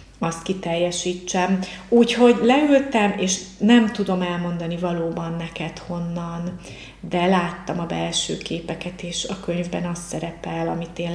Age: 30-49